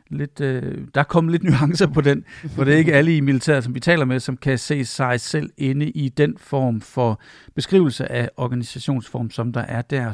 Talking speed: 220 wpm